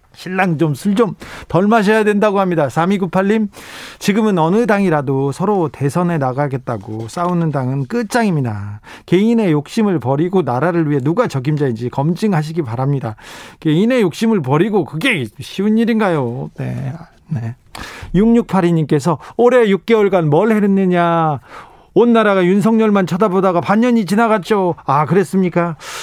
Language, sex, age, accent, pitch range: Korean, male, 40-59, native, 140-190 Hz